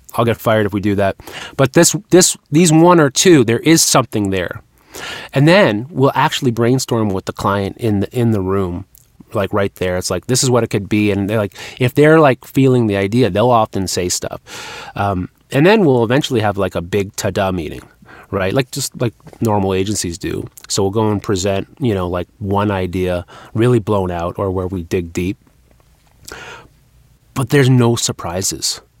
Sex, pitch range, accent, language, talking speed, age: male, 100-135 Hz, American, English, 195 wpm, 30-49